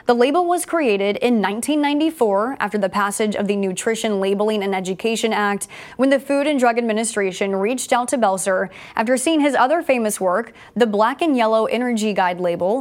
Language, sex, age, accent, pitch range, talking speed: English, female, 20-39, American, 205-250 Hz, 185 wpm